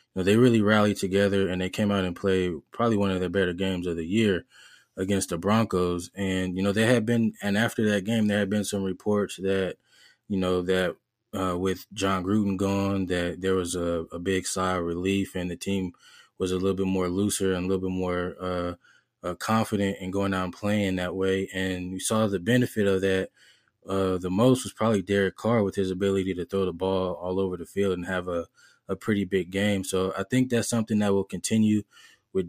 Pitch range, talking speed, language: 95-100 Hz, 220 wpm, English